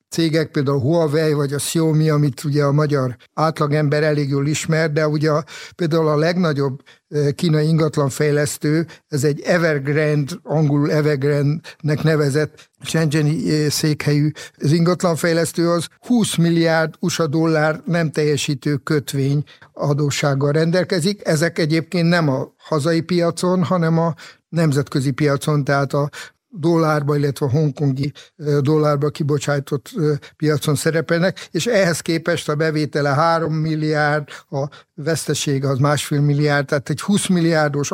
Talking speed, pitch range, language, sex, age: 120 wpm, 145-165 Hz, Hungarian, male, 50-69